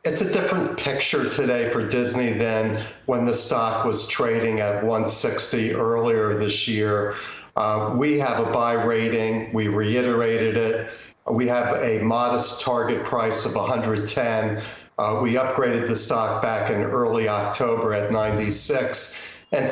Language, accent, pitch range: English, American, 110-125 Hz